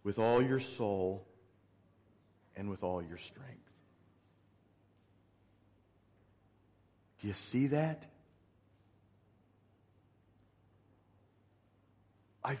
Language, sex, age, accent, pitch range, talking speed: English, male, 40-59, American, 100-125 Hz, 65 wpm